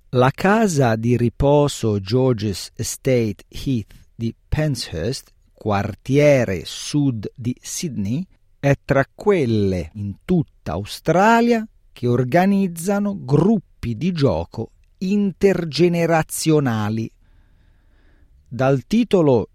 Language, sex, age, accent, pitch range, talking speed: Italian, male, 40-59, native, 105-165 Hz, 85 wpm